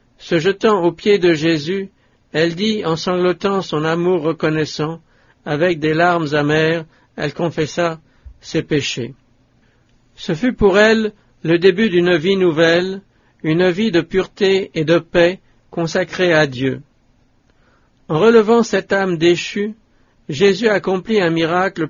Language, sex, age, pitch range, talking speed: English, male, 60-79, 150-190 Hz, 135 wpm